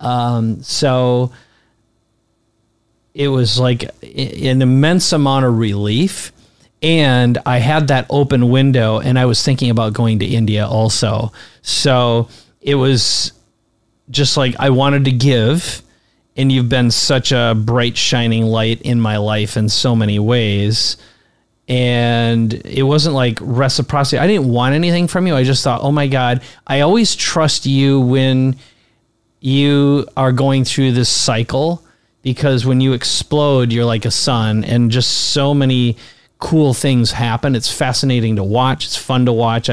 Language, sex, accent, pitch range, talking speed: English, male, American, 115-135 Hz, 150 wpm